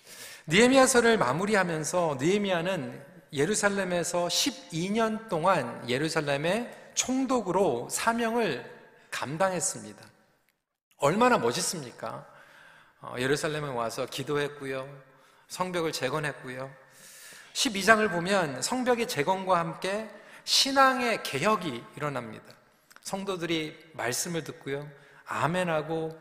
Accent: native